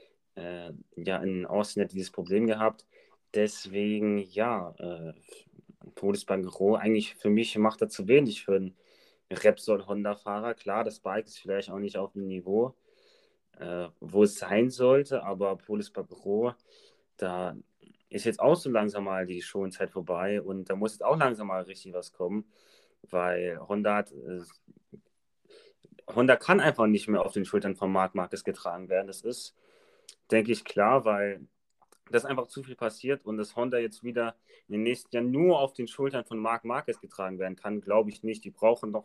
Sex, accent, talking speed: male, German, 170 wpm